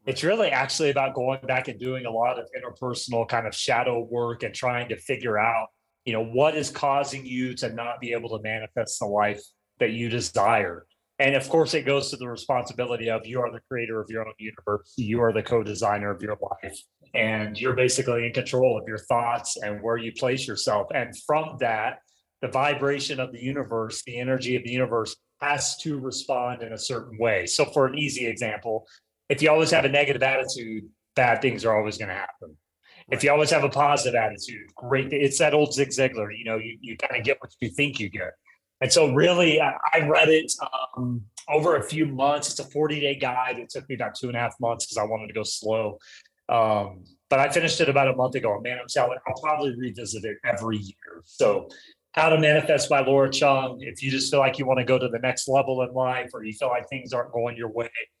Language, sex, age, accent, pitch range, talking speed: English, male, 30-49, American, 115-140 Hz, 225 wpm